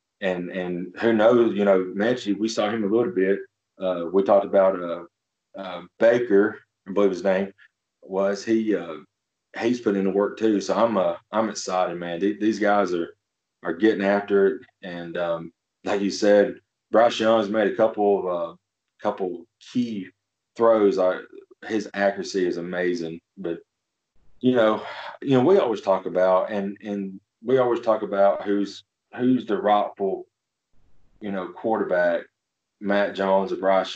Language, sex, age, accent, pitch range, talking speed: English, male, 30-49, American, 95-110 Hz, 165 wpm